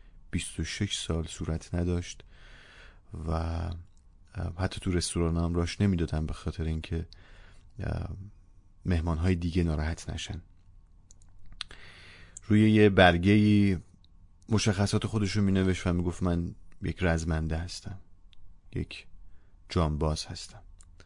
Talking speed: 110 wpm